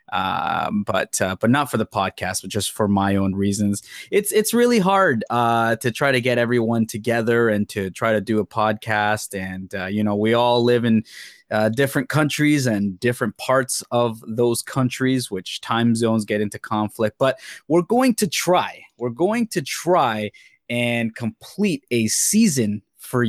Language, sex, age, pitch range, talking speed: English, male, 20-39, 110-135 Hz, 180 wpm